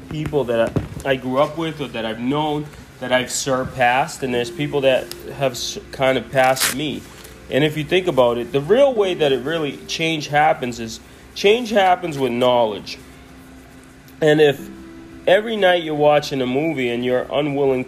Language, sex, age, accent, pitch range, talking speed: English, male, 30-49, American, 125-155 Hz, 175 wpm